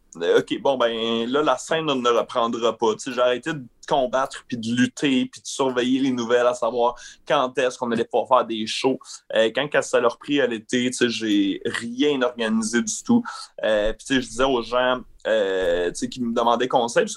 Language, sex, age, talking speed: French, male, 30-49, 205 wpm